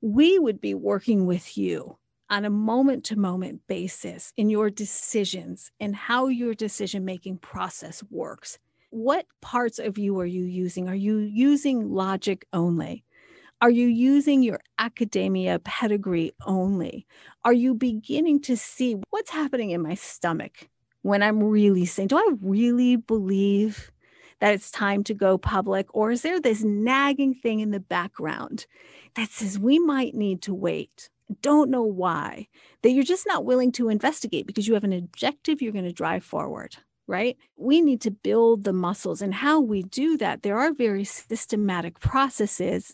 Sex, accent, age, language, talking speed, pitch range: female, American, 40-59, English, 160 wpm, 195-255 Hz